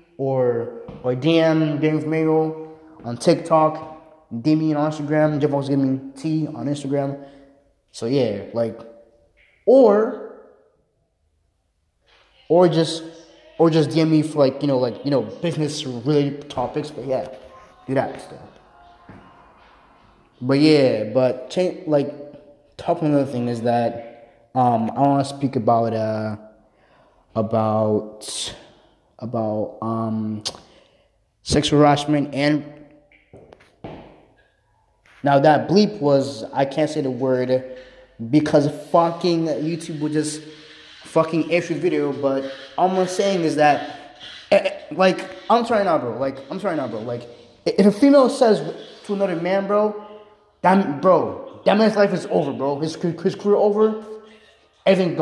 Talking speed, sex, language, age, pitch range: 135 wpm, male, English, 20-39, 130-165 Hz